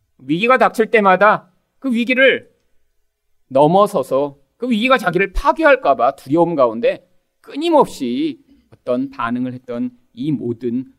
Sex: male